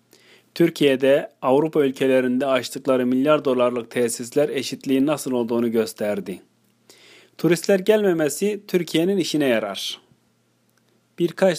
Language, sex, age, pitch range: Turkish, male, 40-59, 130-175 Hz